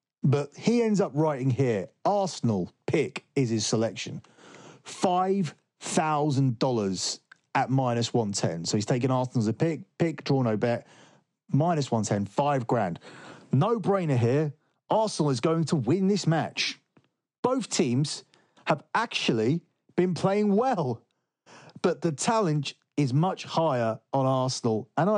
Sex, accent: male, British